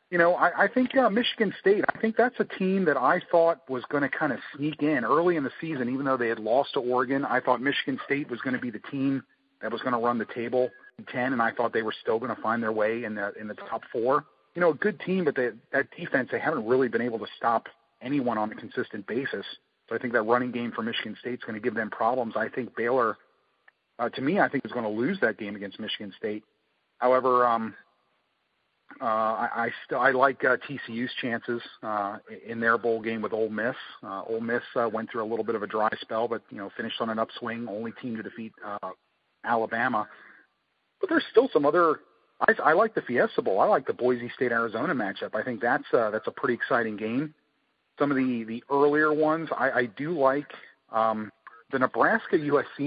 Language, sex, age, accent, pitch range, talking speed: English, male, 40-59, American, 115-145 Hz, 235 wpm